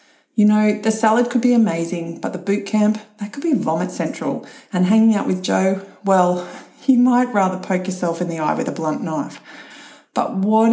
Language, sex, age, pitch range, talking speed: English, female, 40-59, 185-245 Hz, 200 wpm